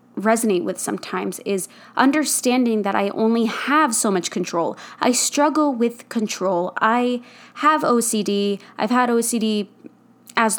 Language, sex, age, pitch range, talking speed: English, female, 20-39, 200-245 Hz, 130 wpm